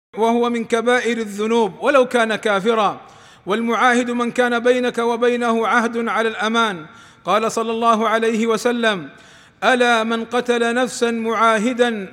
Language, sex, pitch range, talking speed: Arabic, male, 225-245 Hz, 125 wpm